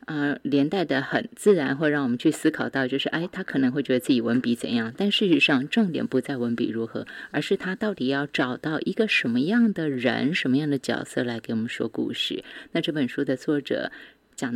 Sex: female